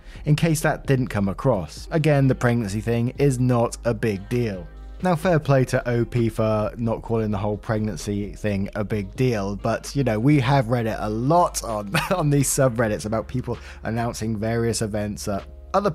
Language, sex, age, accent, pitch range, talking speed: English, male, 20-39, British, 110-140 Hz, 185 wpm